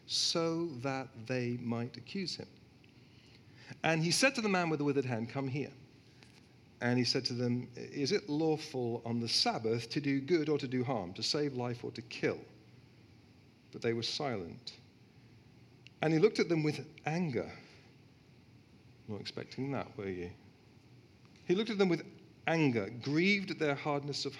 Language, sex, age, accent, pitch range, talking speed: English, male, 50-69, British, 120-145 Hz, 170 wpm